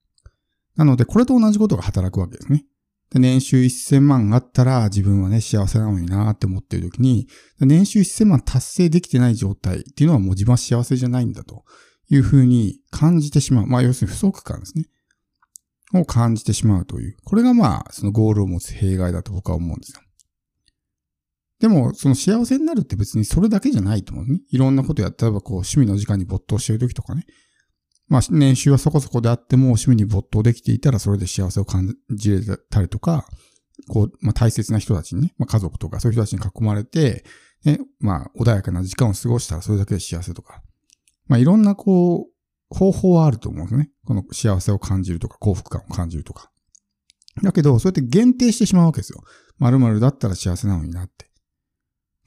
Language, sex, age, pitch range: Japanese, male, 50-69, 100-140 Hz